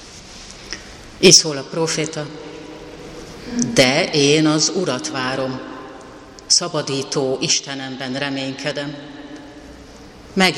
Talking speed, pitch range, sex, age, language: 70 wpm, 140-160 Hz, female, 40-59, Hungarian